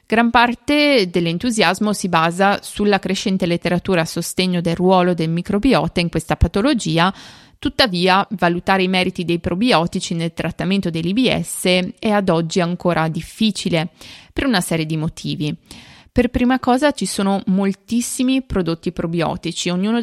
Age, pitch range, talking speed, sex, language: 30-49, 170-215 Hz, 135 wpm, female, Italian